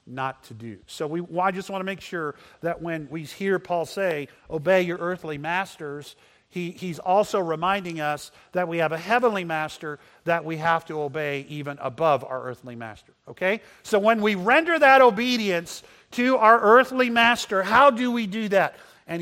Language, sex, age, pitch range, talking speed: English, male, 50-69, 165-230 Hz, 180 wpm